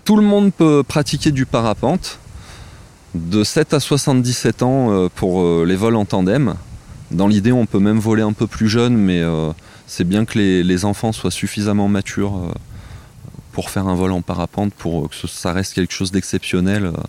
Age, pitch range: 20-39, 95-125 Hz